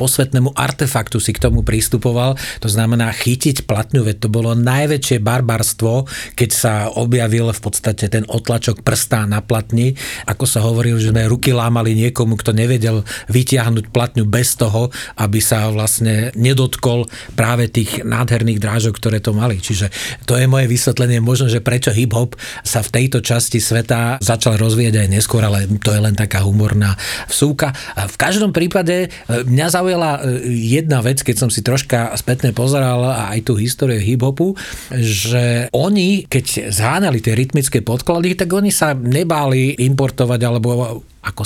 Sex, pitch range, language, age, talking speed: male, 110-130 Hz, Slovak, 40-59, 155 wpm